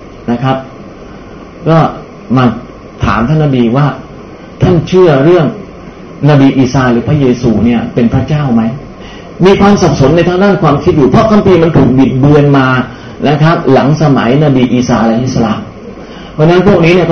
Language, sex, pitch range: Thai, male, 125-160 Hz